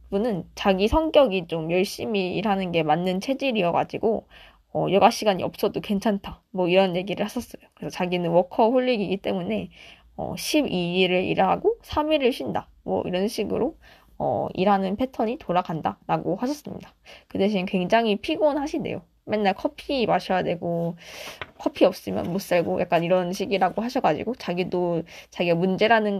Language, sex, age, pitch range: Korean, female, 20-39, 180-225 Hz